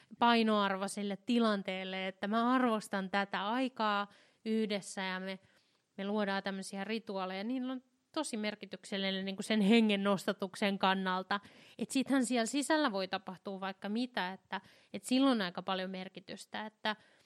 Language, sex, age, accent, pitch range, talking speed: Finnish, female, 20-39, native, 200-230 Hz, 140 wpm